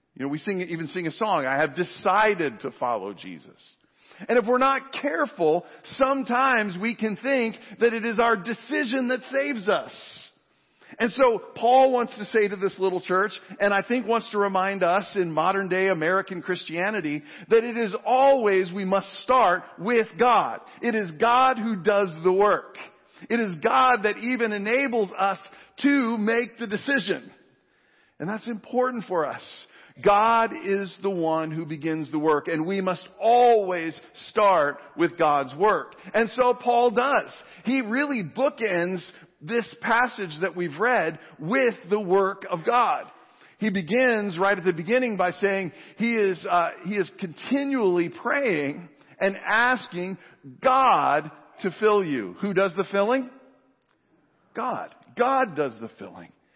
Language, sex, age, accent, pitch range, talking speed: English, male, 50-69, American, 185-240 Hz, 155 wpm